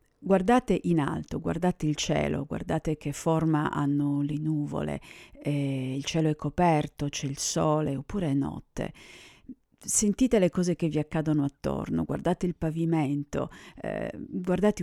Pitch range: 145-170 Hz